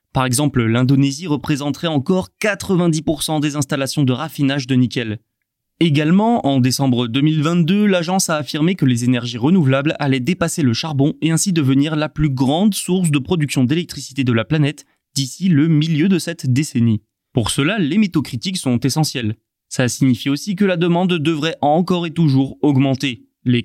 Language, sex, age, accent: French, male, 20-39, French